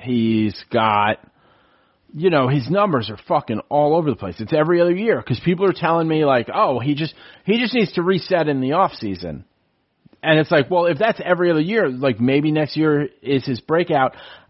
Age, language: 30-49, English